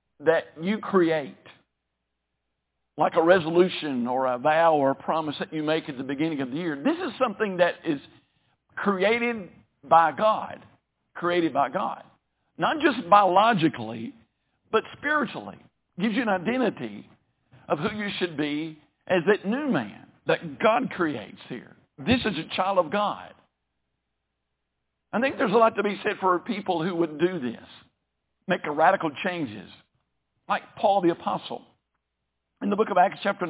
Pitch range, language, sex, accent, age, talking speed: 150-210 Hz, English, male, American, 50-69, 155 wpm